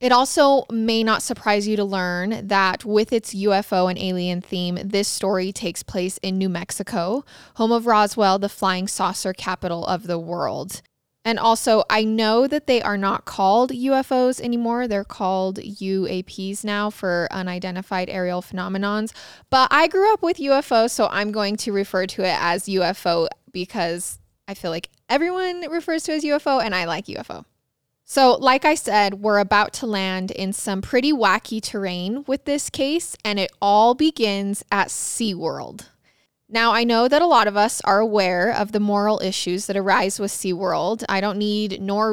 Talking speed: 175 wpm